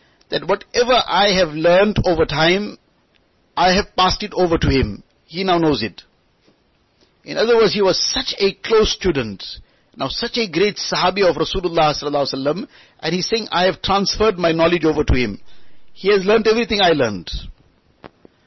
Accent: Indian